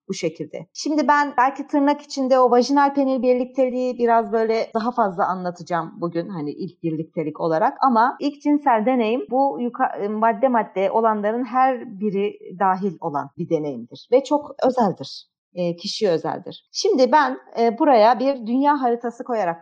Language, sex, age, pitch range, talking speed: Turkish, female, 40-59, 175-255 Hz, 155 wpm